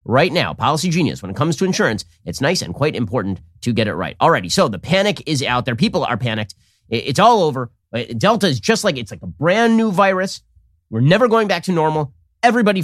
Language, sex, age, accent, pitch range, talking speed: English, male, 30-49, American, 115-175 Hz, 225 wpm